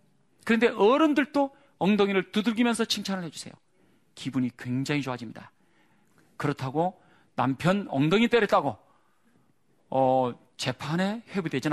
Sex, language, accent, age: male, Korean, native, 40-59